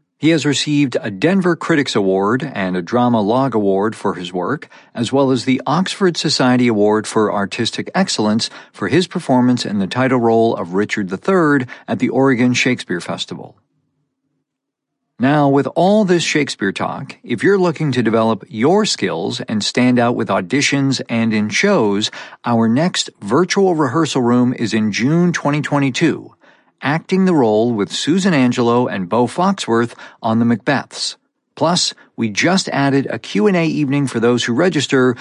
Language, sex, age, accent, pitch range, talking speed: English, male, 50-69, American, 115-150 Hz, 160 wpm